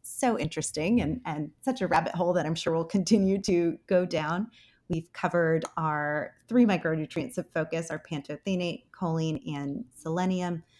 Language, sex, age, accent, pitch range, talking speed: English, female, 30-49, American, 160-205 Hz, 155 wpm